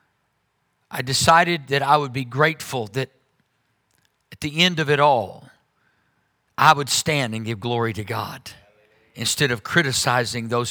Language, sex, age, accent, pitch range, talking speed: English, male, 50-69, American, 120-165 Hz, 145 wpm